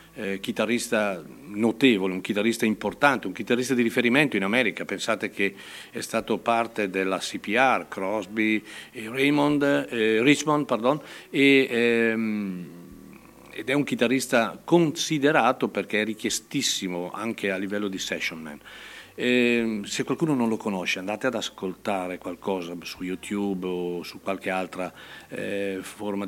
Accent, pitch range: native, 100-130 Hz